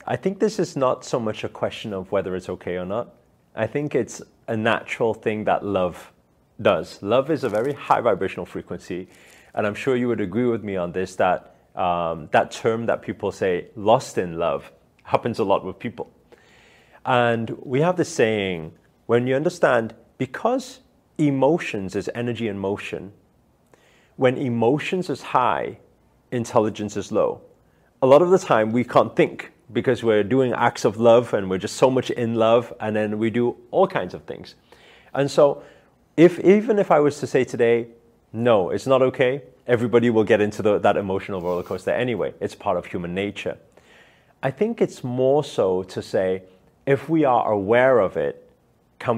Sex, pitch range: male, 105-145 Hz